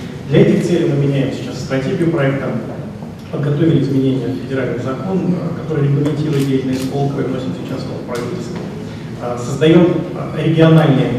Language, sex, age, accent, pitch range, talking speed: Russian, male, 30-49, native, 135-165 Hz, 125 wpm